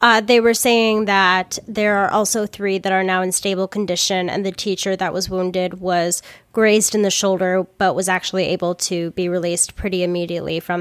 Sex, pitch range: female, 185-215 Hz